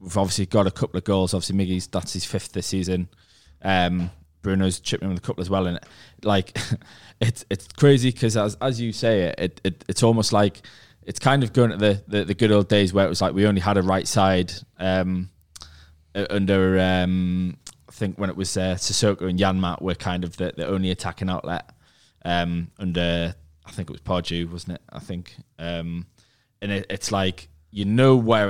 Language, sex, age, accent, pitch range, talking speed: English, male, 20-39, British, 90-105 Hz, 205 wpm